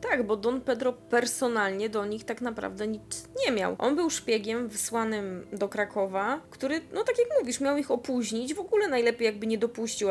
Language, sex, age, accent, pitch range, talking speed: Polish, female, 20-39, native, 205-260 Hz, 190 wpm